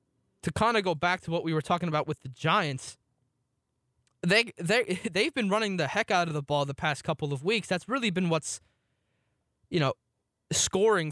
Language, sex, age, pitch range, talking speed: English, male, 20-39, 140-180 Hz, 200 wpm